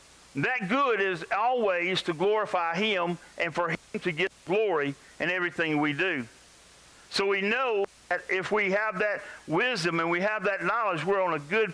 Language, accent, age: English, American, 50-69